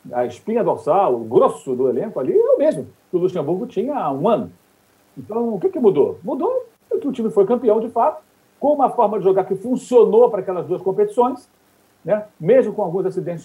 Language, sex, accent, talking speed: Portuguese, male, Brazilian, 210 wpm